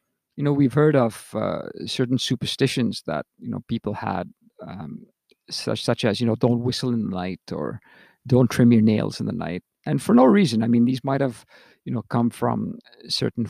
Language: English